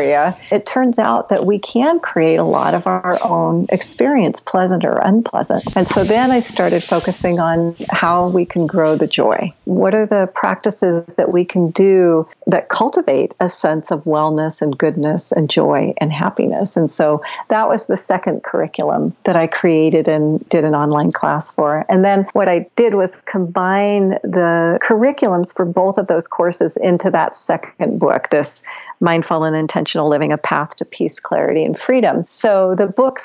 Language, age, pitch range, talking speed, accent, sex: English, 50-69, 160-195 Hz, 175 wpm, American, female